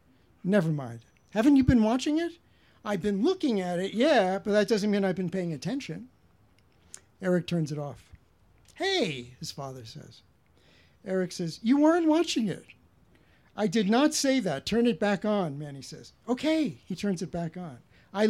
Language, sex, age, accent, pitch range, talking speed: English, male, 60-79, American, 155-235 Hz, 175 wpm